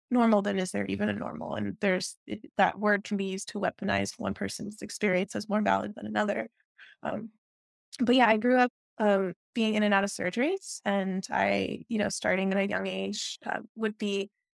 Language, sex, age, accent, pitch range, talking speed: English, female, 20-39, American, 195-230 Hz, 205 wpm